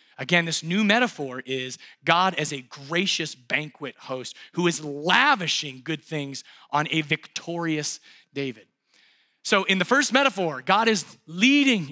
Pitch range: 145-195 Hz